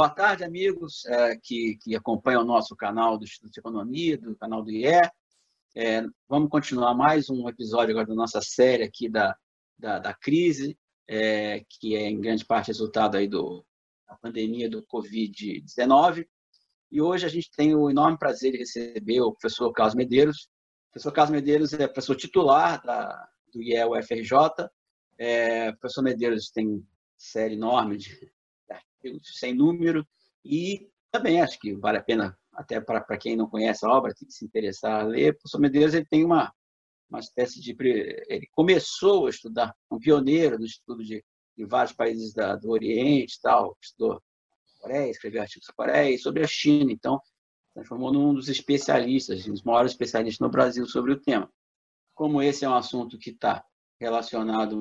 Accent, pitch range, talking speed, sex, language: Brazilian, 110-150 Hz, 165 wpm, male, Portuguese